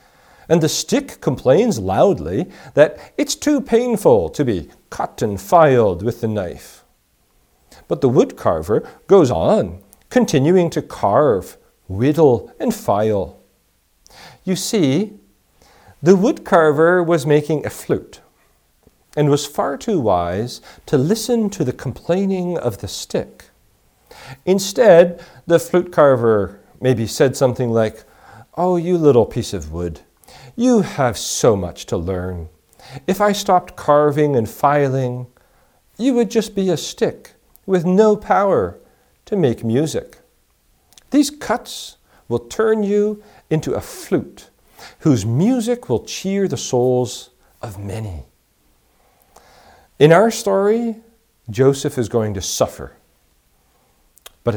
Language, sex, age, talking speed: English, male, 40-59, 120 wpm